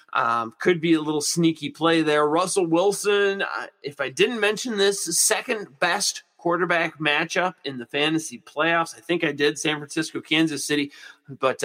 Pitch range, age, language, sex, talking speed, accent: 150-205 Hz, 30-49, English, male, 170 wpm, American